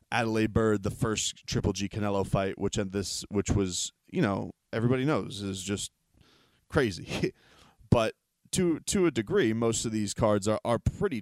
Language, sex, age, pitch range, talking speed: English, male, 20-39, 105-125 Hz, 165 wpm